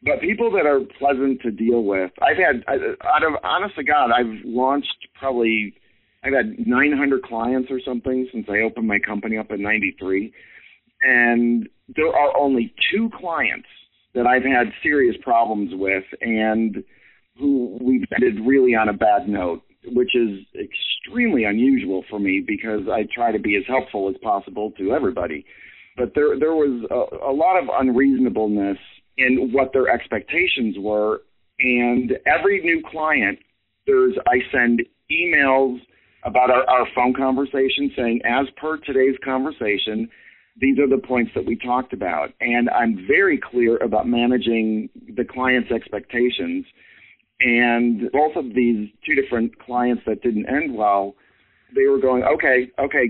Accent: American